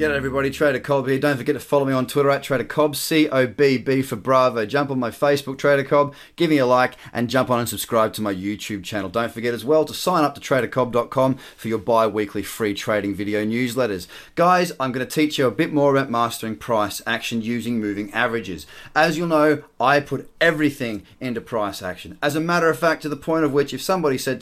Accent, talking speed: Australian, 220 wpm